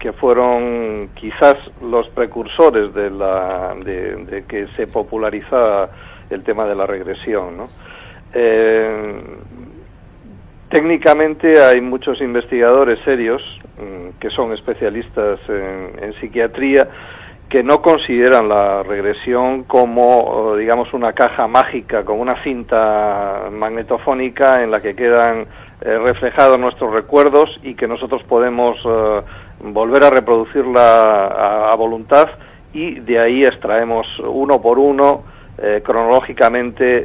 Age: 50-69